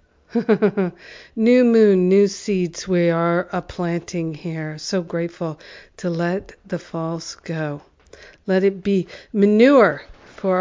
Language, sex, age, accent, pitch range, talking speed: English, female, 50-69, American, 180-210 Hz, 120 wpm